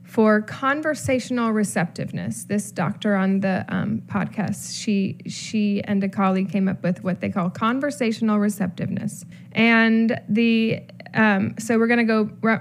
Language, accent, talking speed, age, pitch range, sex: English, American, 135 wpm, 10-29, 200-250 Hz, female